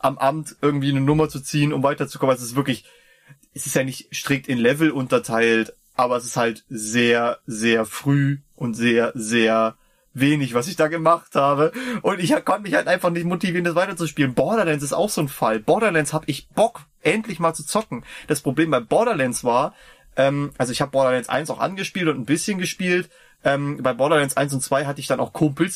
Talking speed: 205 wpm